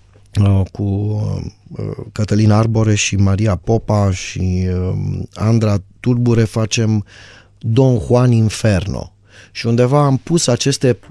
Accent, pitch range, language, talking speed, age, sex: native, 105-135 Hz, Romanian, 95 wpm, 30-49, male